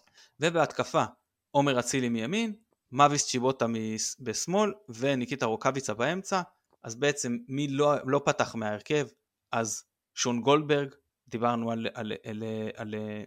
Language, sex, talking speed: Hebrew, male, 120 wpm